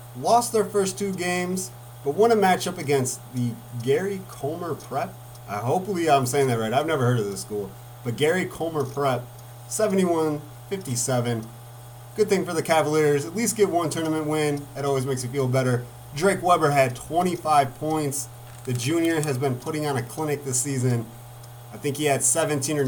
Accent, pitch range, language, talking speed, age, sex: American, 120-165 Hz, English, 180 wpm, 30-49, male